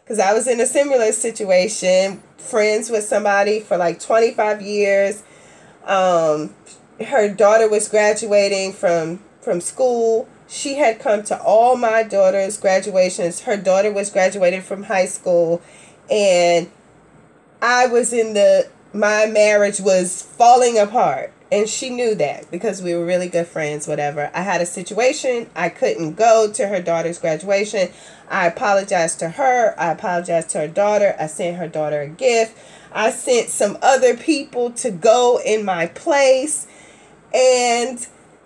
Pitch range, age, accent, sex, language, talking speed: 175-230 Hz, 30-49, American, female, English, 150 wpm